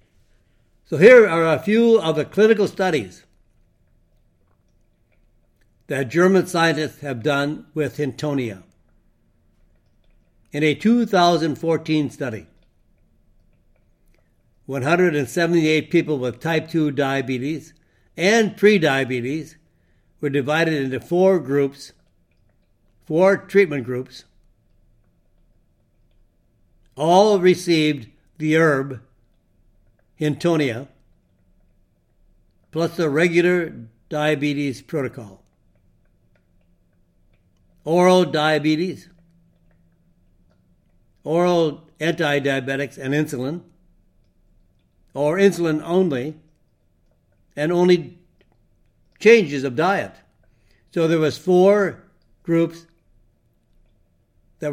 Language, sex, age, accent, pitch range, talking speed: English, male, 60-79, American, 115-165 Hz, 70 wpm